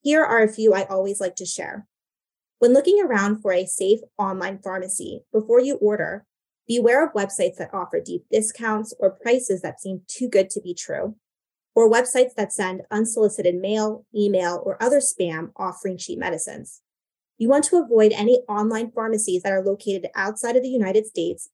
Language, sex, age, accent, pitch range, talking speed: English, female, 20-39, American, 195-240 Hz, 180 wpm